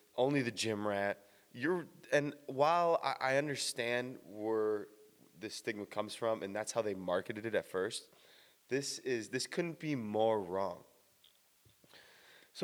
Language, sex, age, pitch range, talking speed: English, male, 20-39, 105-145 Hz, 145 wpm